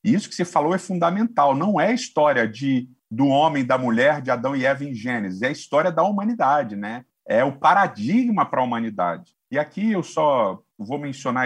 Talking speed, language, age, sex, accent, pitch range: 210 wpm, Portuguese, 50-69, male, Brazilian, 130-180 Hz